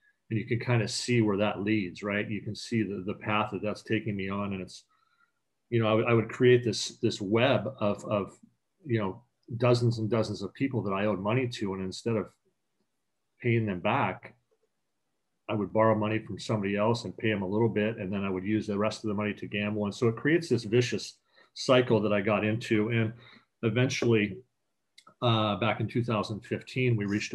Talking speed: 210 wpm